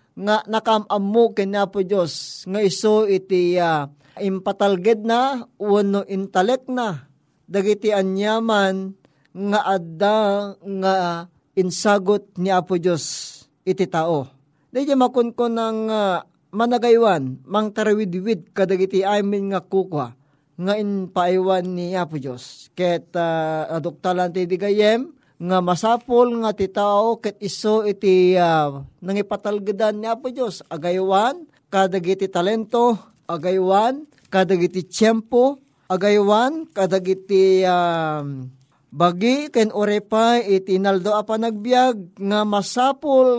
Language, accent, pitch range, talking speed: Filipino, native, 180-220 Hz, 105 wpm